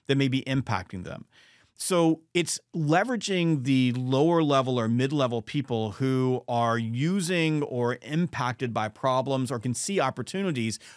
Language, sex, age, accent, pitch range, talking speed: English, male, 40-59, American, 125-160 Hz, 135 wpm